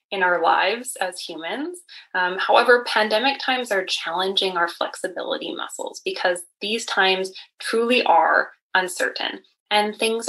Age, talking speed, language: 20-39, 130 wpm, English